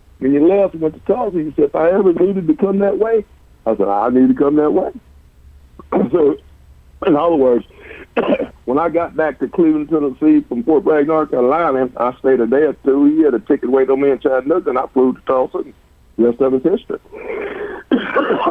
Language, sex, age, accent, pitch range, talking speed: English, male, 60-79, American, 105-135 Hz, 210 wpm